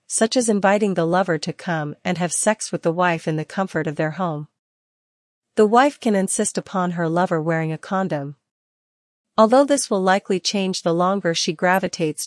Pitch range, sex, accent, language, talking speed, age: 165-200 Hz, female, American, English, 185 wpm, 40-59